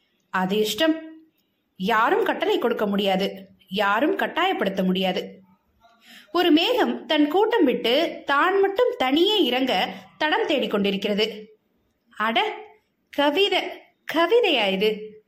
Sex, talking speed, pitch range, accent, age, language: female, 80 wpm, 215-335 Hz, native, 20-39, Tamil